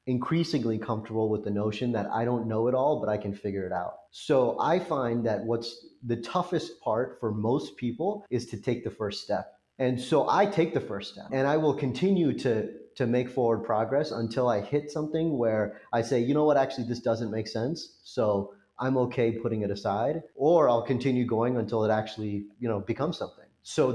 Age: 30-49